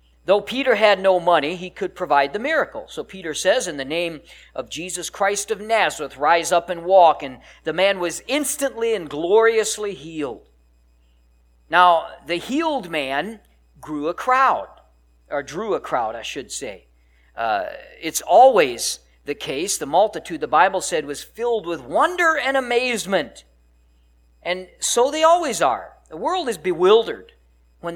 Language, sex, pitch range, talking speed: English, male, 135-205 Hz, 155 wpm